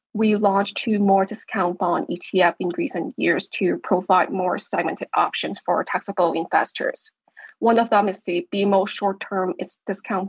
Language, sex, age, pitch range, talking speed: English, female, 20-39, 185-225 Hz, 150 wpm